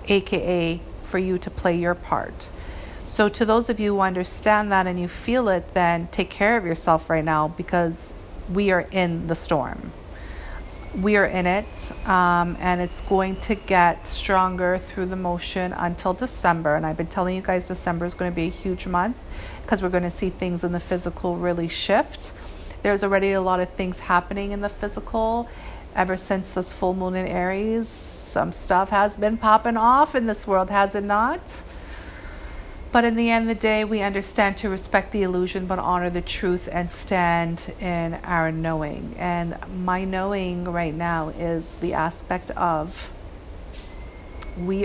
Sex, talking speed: female, 180 wpm